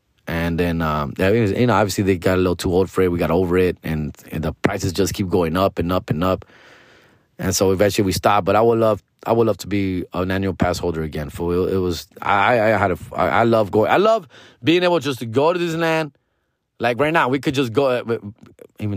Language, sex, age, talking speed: English, male, 20-39, 245 wpm